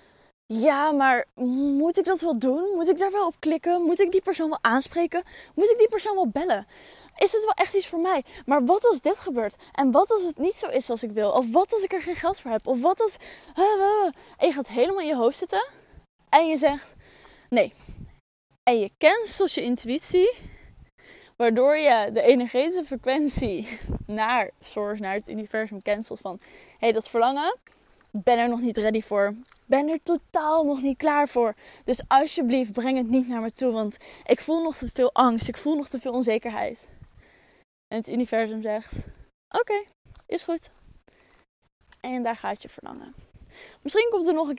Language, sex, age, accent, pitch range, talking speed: Dutch, female, 10-29, Dutch, 245-360 Hz, 190 wpm